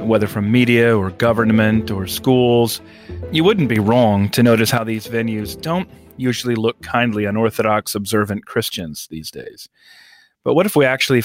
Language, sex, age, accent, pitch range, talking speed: English, male, 30-49, American, 110-145 Hz, 165 wpm